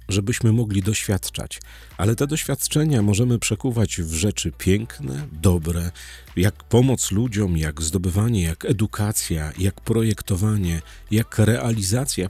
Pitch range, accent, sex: 85-120 Hz, native, male